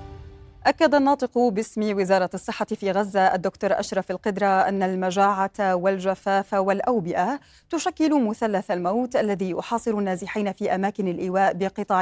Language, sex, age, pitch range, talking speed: Arabic, female, 30-49, 185-230 Hz, 120 wpm